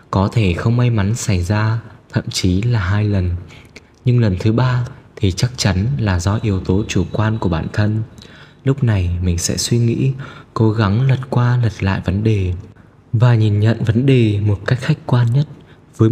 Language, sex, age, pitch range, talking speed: Vietnamese, male, 20-39, 100-125 Hz, 195 wpm